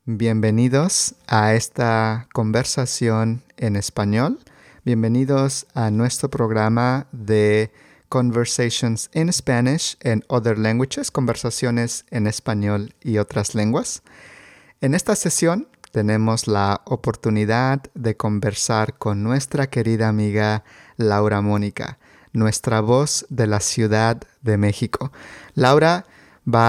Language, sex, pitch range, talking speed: English, male, 110-135 Hz, 105 wpm